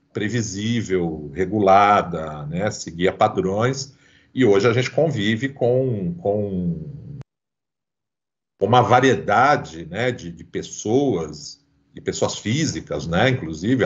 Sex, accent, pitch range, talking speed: male, Brazilian, 95-135 Hz, 100 wpm